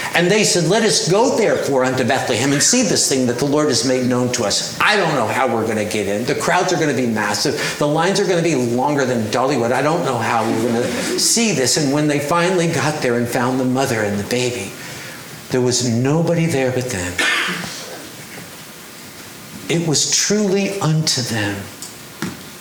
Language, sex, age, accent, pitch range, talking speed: English, male, 60-79, American, 120-160 Hz, 210 wpm